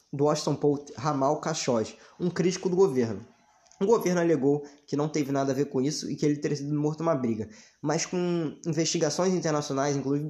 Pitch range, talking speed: 140-175 Hz, 200 wpm